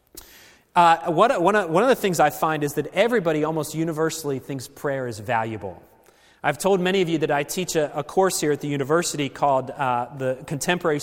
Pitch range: 140-185 Hz